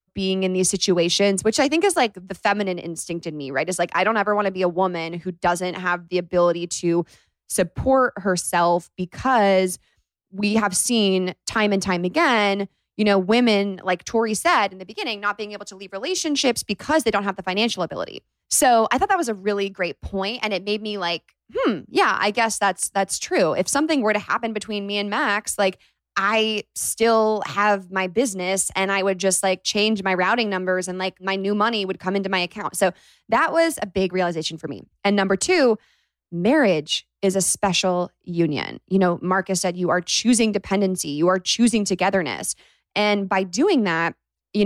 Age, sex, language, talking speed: 20-39, female, English, 205 wpm